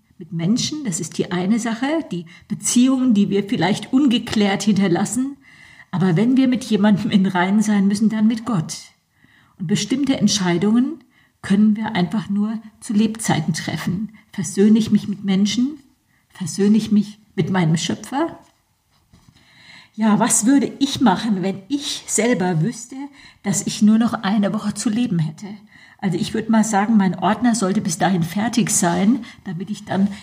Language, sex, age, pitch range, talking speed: German, female, 50-69, 185-225 Hz, 160 wpm